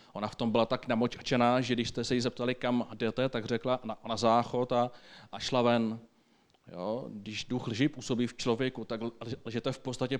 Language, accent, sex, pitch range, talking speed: Czech, native, male, 110-130 Hz, 190 wpm